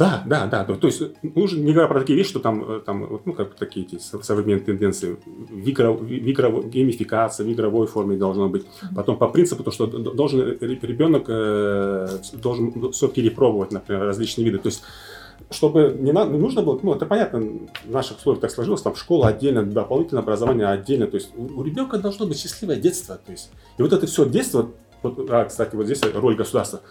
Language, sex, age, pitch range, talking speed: Russian, male, 30-49, 105-135 Hz, 180 wpm